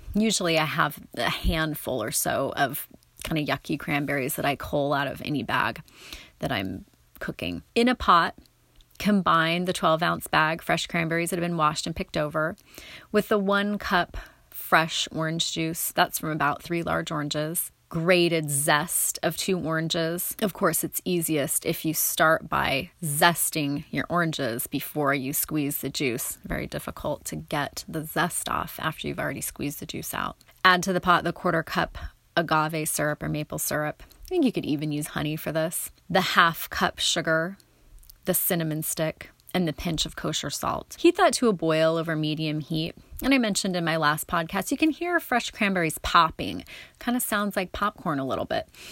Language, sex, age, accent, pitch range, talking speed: English, female, 30-49, American, 155-195 Hz, 185 wpm